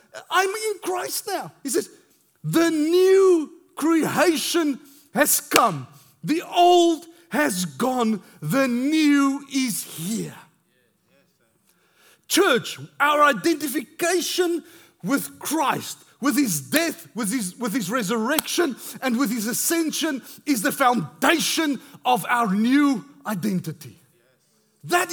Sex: male